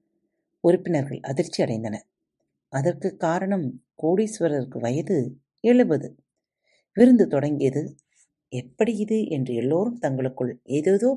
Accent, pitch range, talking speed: native, 140-220 Hz, 85 wpm